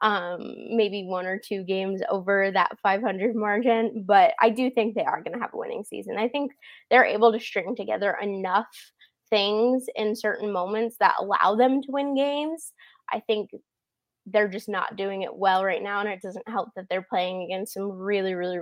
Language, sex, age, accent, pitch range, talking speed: English, female, 20-39, American, 200-255 Hz, 200 wpm